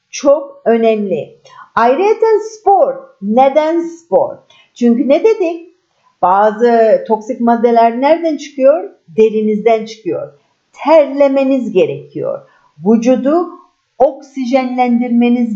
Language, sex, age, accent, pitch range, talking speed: Turkish, female, 50-69, native, 220-350 Hz, 75 wpm